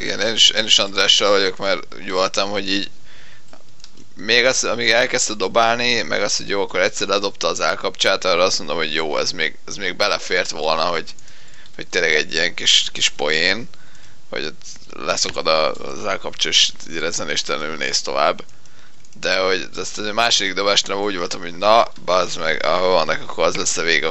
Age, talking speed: 20-39, 180 wpm